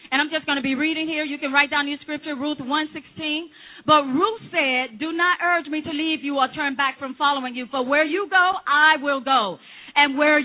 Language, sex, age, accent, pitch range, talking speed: English, female, 40-59, American, 275-330 Hz, 235 wpm